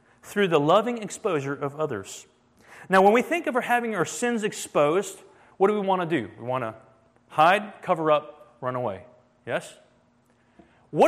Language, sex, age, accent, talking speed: English, male, 30-49, American, 170 wpm